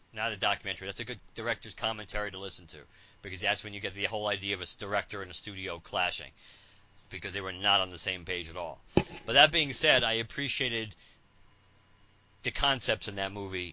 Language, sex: English, male